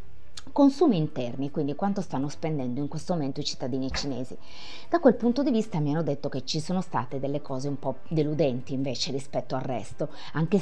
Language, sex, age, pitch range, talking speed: Italian, female, 30-49, 135-165 Hz, 190 wpm